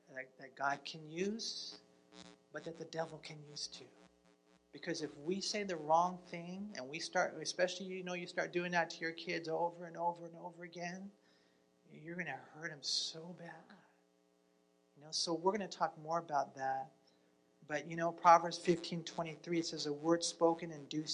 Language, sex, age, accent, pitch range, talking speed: English, male, 40-59, American, 140-175 Hz, 190 wpm